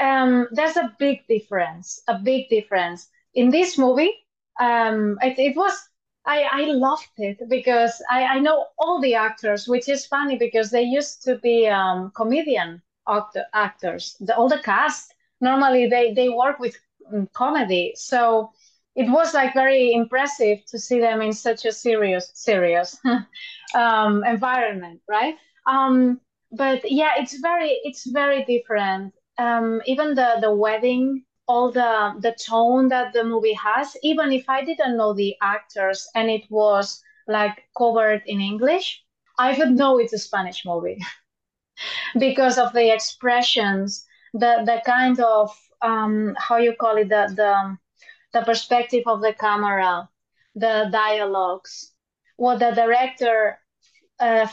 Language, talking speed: English, 145 wpm